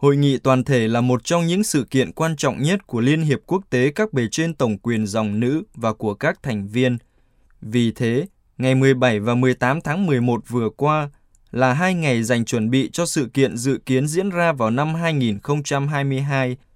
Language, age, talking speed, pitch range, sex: Vietnamese, 20-39, 200 wpm, 120-145 Hz, male